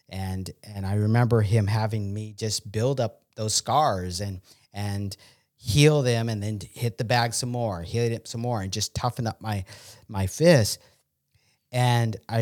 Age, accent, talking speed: 40-59, American, 170 wpm